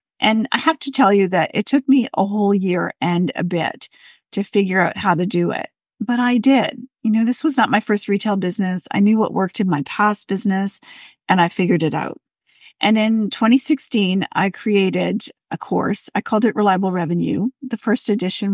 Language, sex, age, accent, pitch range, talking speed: English, female, 40-59, American, 185-230 Hz, 205 wpm